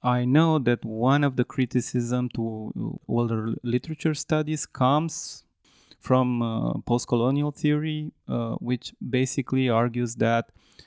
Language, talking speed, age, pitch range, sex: Romanian, 115 wpm, 20-39, 115-135 Hz, male